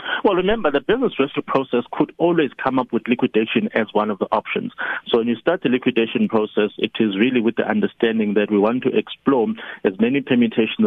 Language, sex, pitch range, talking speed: English, male, 105-125 Hz, 210 wpm